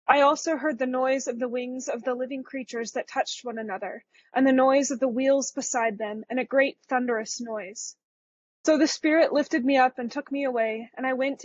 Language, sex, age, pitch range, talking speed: English, female, 20-39, 235-275 Hz, 220 wpm